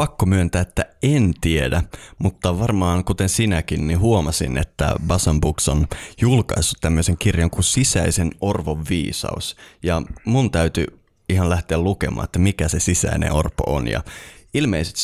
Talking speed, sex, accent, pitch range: 140 wpm, male, native, 75-95 Hz